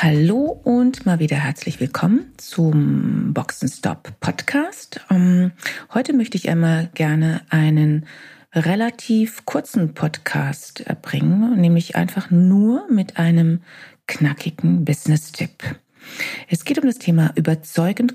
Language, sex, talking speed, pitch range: German, female, 105 wpm, 150-200 Hz